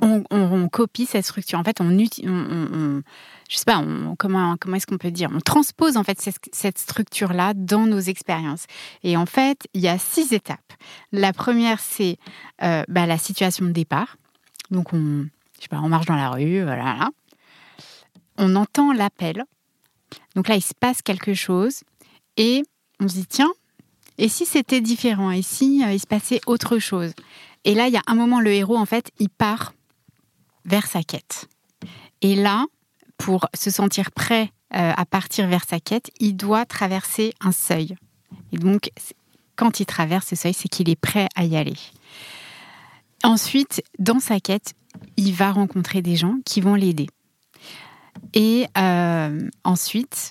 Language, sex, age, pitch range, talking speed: French, female, 30-49, 175-220 Hz, 180 wpm